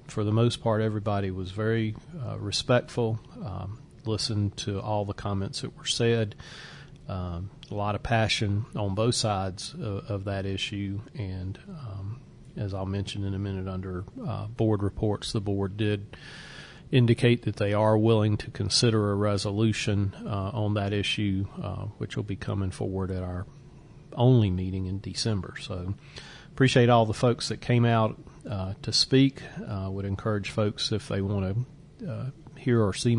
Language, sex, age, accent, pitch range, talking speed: English, male, 40-59, American, 100-120 Hz, 165 wpm